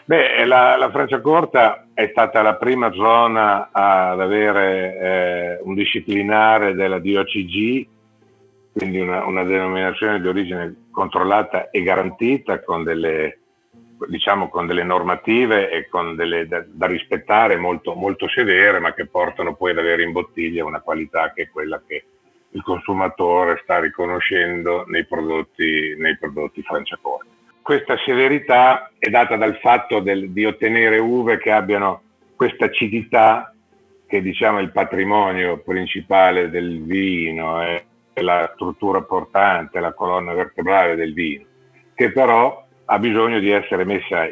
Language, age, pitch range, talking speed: Italian, 50-69, 90-115 Hz, 135 wpm